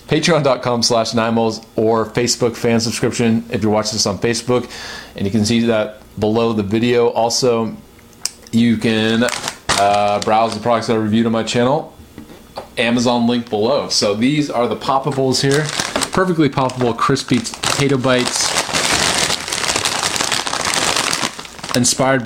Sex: male